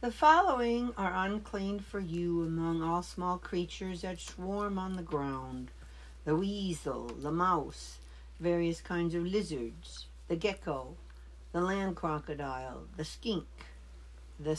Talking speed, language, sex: 130 wpm, English, female